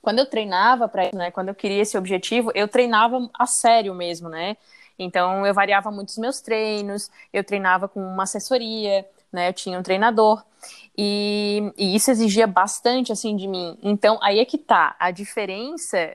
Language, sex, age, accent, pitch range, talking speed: Portuguese, female, 20-39, Brazilian, 190-235 Hz, 180 wpm